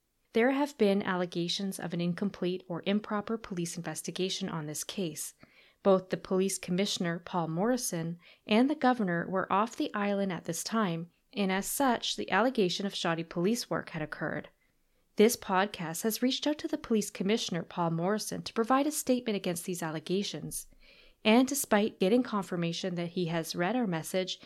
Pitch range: 175-220 Hz